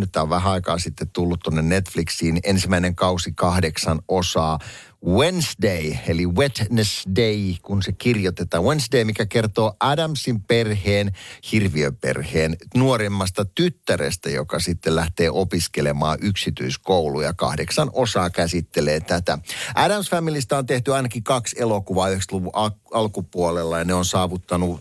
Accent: native